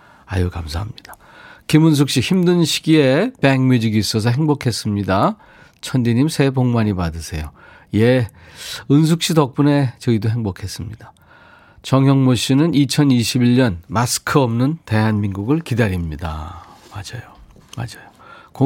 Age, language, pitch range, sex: 40-59, Korean, 105-145 Hz, male